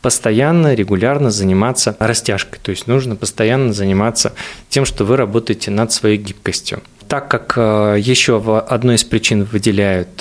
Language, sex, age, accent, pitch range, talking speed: Russian, male, 20-39, native, 105-135 Hz, 140 wpm